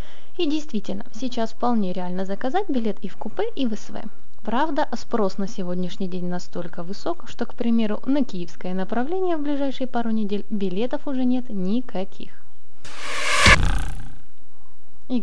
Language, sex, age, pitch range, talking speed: Russian, female, 20-39, 190-255 Hz, 140 wpm